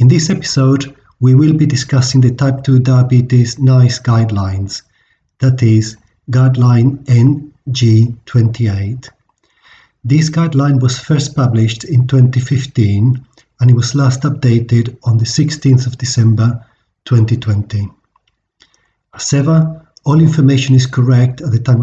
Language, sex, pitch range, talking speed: English, male, 115-135 Hz, 120 wpm